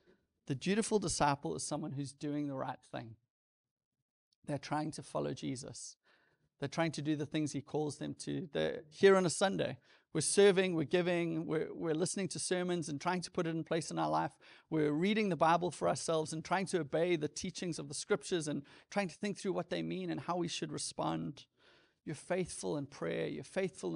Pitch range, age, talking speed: 140-170 Hz, 30-49, 205 wpm